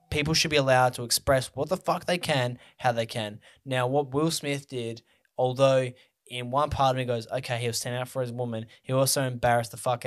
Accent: Australian